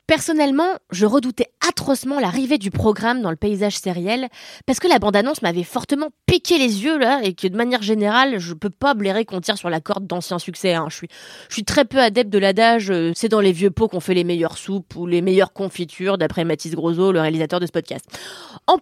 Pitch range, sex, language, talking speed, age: 190-275 Hz, female, French, 225 wpm, 20-39